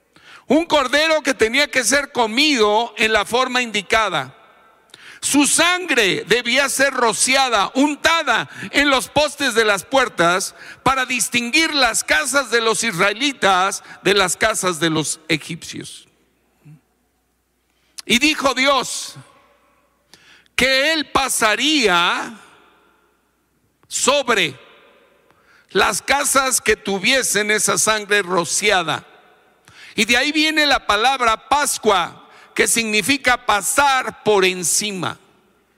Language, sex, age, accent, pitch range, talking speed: Spanish, male, 50-69, Mexican, 200-280 Hz, 105 wpm